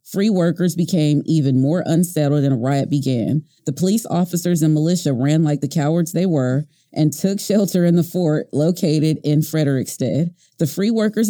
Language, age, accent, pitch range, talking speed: English, 30-49, American, 145-185 Hz, 175 wpm